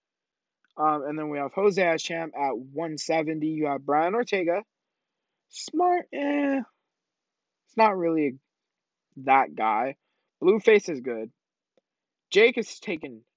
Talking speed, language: 120 wpm, English